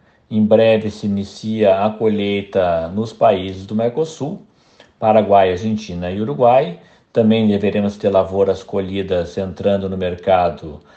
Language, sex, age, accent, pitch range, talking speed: Portuguese, male, 50-69, Brazilian, 100-125 Hz, 120 wpm